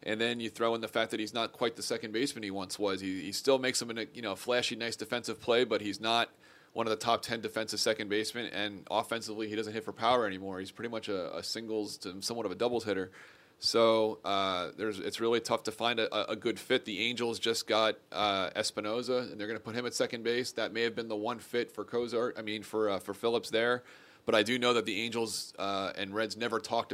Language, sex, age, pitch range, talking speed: English, male, 30-49, 100-115 Hz, 255 wpm